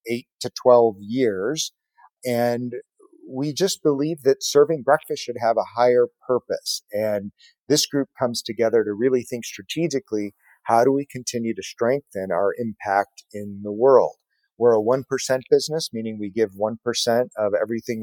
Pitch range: 110-135 Hz